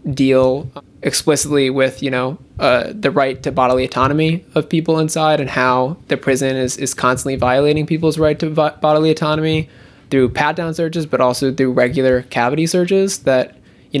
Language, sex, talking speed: English, male, 165 wpm